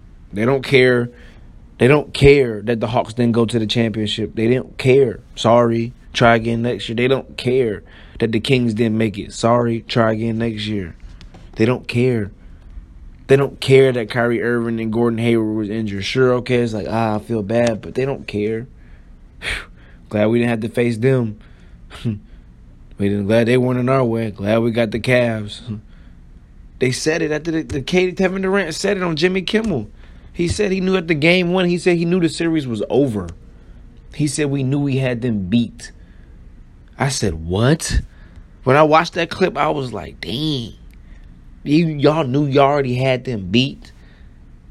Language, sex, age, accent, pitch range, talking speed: English, male, 20-39, American, 105-130 Hz, 185 wpm